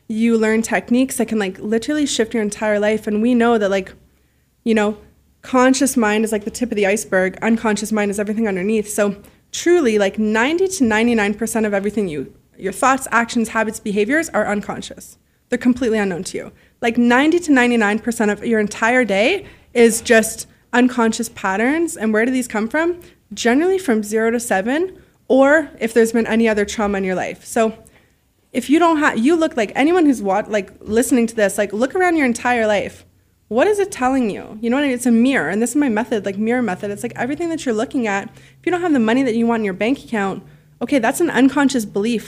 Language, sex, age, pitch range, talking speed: English, female, 20-39, 210-255 Hz, 220 wpm